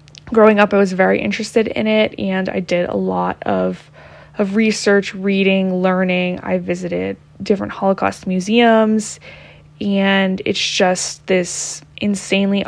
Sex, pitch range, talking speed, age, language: female, 185-215 Hz, 135 wpm, 20-39, English